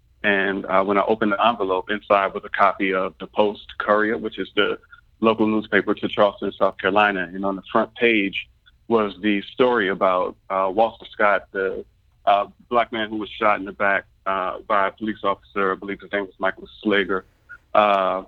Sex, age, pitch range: male, 30-49, 95-110 Hz